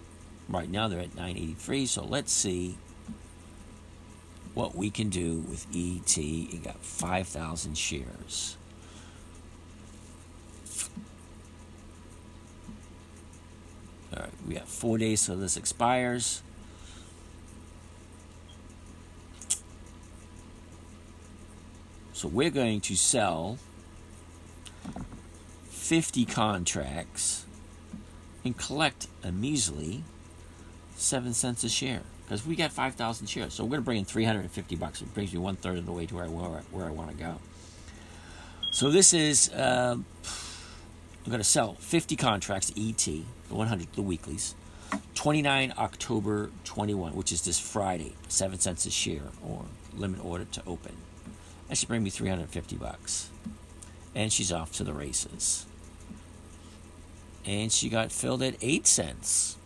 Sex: male